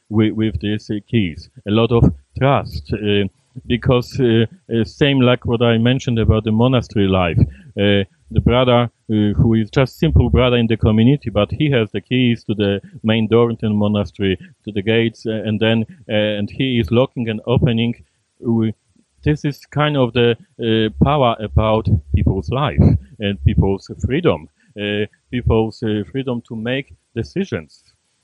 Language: English